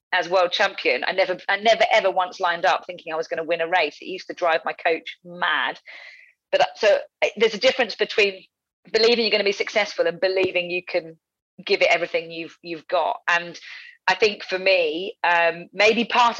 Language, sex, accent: English, female, British